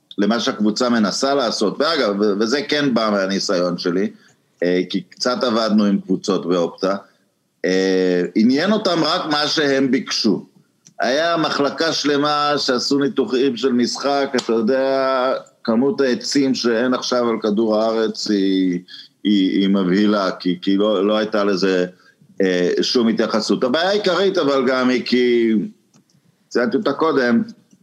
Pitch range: 100-140 Hz